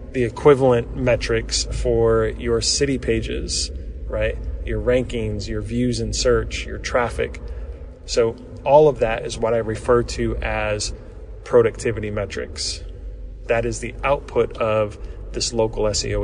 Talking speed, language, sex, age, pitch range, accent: 135 wpm, English, male, 20-39, 110-130 Hz, American